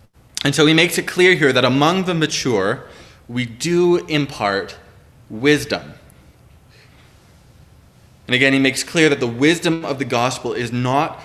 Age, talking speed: 20-39, 150 wpm